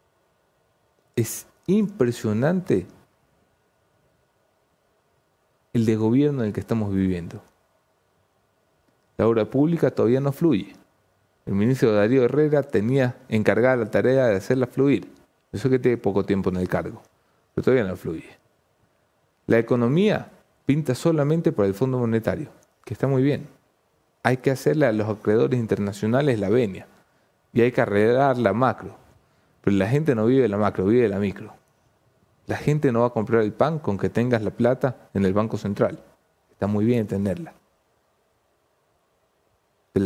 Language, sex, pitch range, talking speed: English, male, 100-130 Hz, 150 wpm